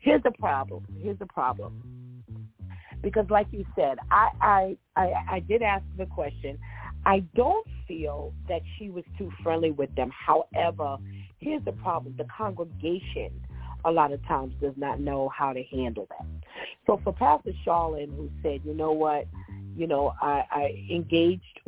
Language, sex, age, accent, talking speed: English, female, 40-59, American, 165 wpm